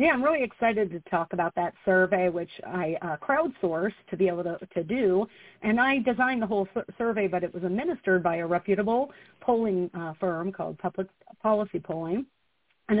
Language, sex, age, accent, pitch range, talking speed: English, female, 40-59, American, 180-220 Hz, 190 wpm